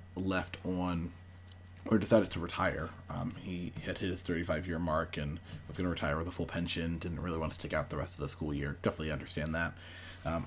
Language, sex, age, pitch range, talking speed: English, male, 30-49, 85-100 Hz, 220 wpm